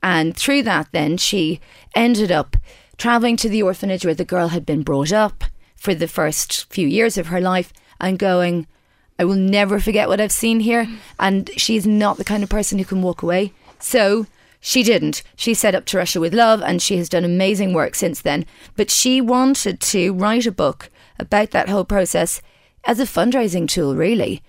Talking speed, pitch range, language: 200 wpm, 175-225 Hz, English